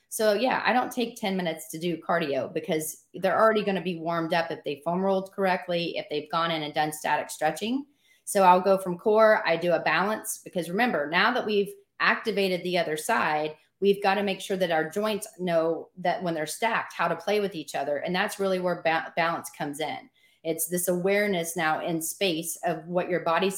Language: English